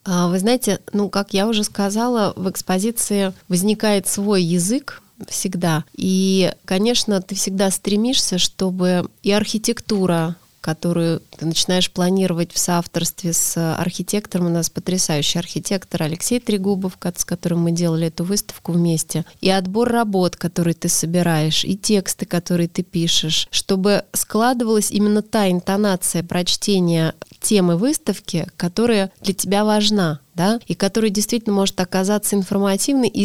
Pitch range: 175-210 Hz